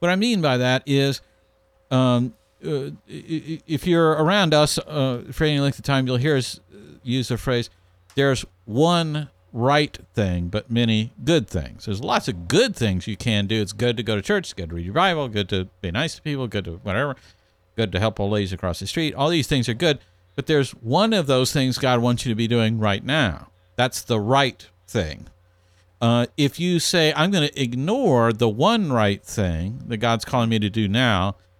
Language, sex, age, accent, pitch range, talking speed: English, male, 50-69, American, 100-140 Hz, 210 wpm